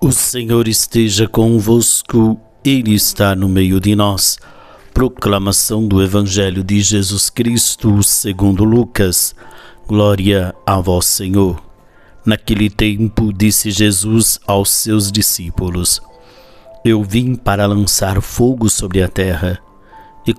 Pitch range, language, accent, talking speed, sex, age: 95-115 Hz, Portuguese, Brazilian, 110 wpm, male, 50-69